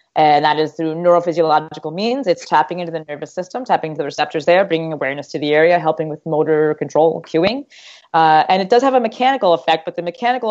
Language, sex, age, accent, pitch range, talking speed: English, female, 20-39, American, 155-185 Hz, 215 wpm